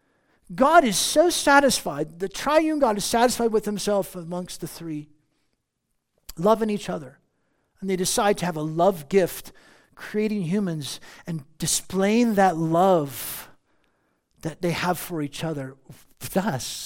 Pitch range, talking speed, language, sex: 130-195 Hz, 135 wpm, English, male